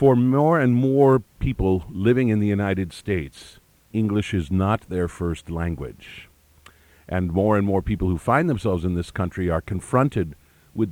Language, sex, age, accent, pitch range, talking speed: English, male, 50-69, American, 90-115 Hz, 165 wpm